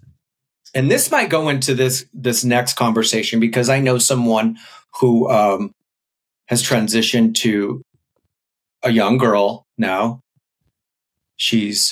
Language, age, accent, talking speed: English, 30-49, American, 115 wpm